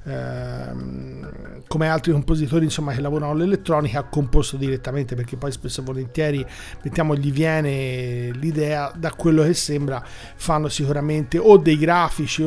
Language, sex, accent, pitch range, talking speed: Italian, male, native, 140-165 Hz, 140 wpm